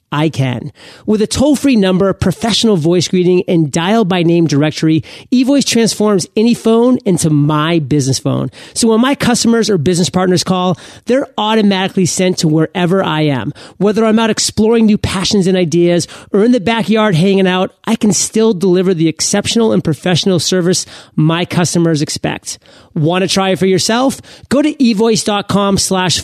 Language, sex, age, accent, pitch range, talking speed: English, male, 30-49, American, 165-220 Hz, 170 wpm